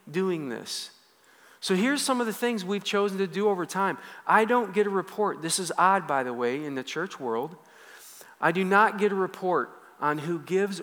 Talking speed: 210 wpm